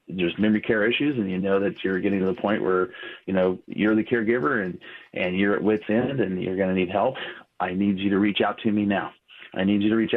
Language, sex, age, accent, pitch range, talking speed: English, male, 40-59, American, 100-115 Hz, 265 wpm